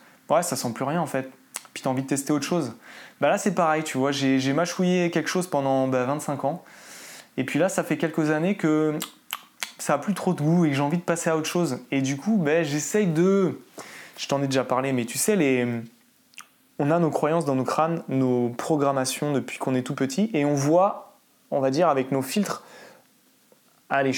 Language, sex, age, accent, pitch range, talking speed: French, male, 20-39, French, 140-190 Hz, 225 wpm